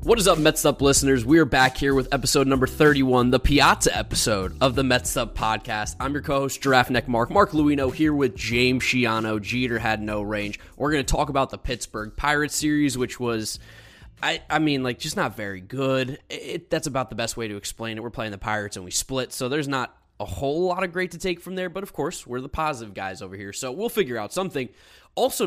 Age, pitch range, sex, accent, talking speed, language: 20-39, 115-150 Hz, male, American, 240 wpm, English